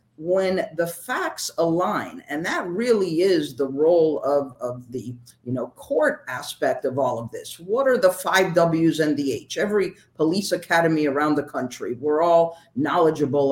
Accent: American